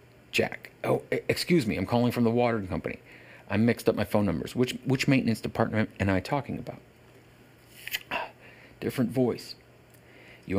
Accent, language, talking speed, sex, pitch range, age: American, English, 160 wpm, male, 105-130 Hz, 40-59